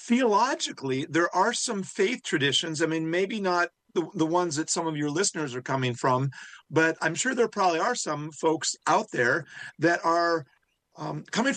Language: English